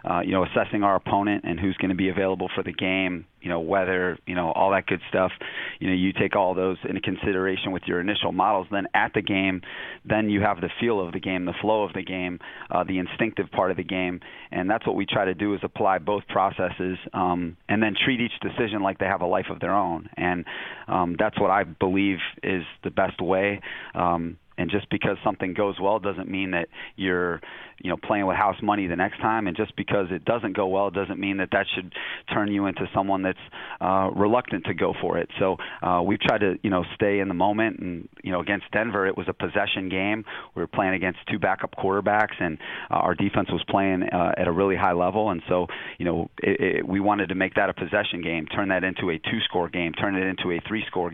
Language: English